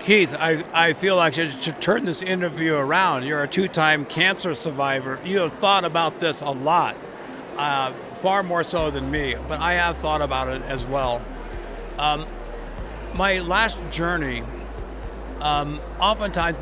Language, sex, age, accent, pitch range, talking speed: English, male, 60-79, American, 145-175 Hz, 155 wpm